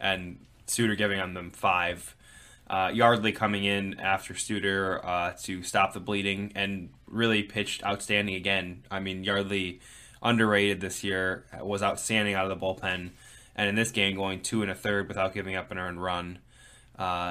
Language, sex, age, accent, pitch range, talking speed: English, male, 10-29, American, 95-105 Hz, 175 wpm